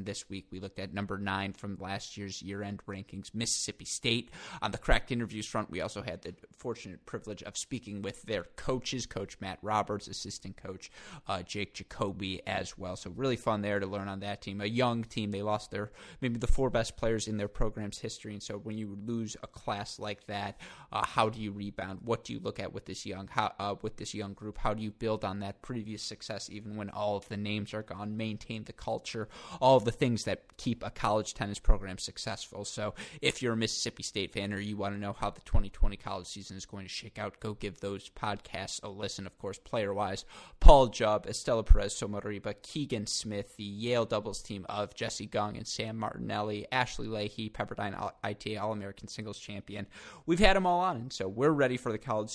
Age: 20-39